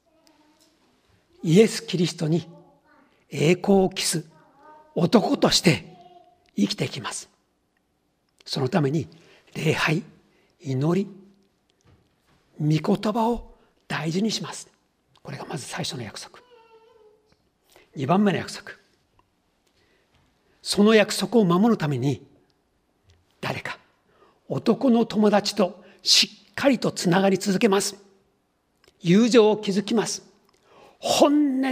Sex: male